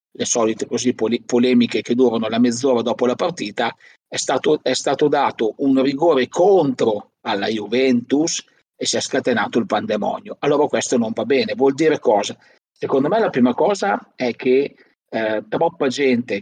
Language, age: Italian, 40-59